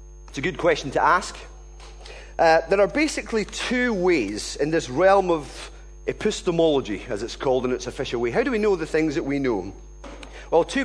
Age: 30-49